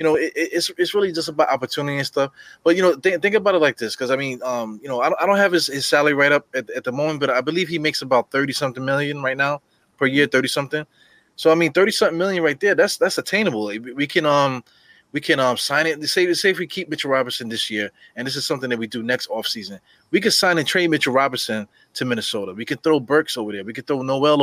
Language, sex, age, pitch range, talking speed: English, male, 20-39, 130-160 Hz, 275 wpm